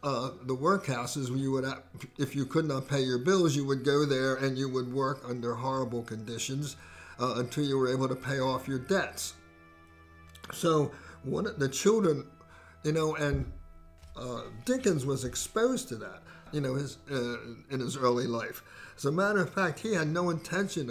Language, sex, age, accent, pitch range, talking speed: English, male, 60-79, American, 125-155 Hz, 185 wpm